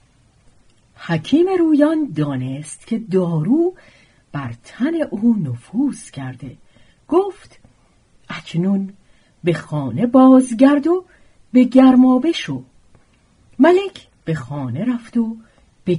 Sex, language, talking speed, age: female, Persian, 95 wpm, 50-69